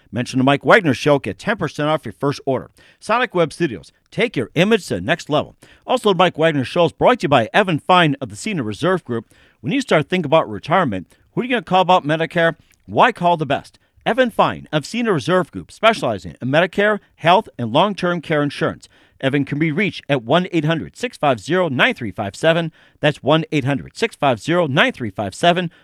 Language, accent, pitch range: English, American, 135-175 Hz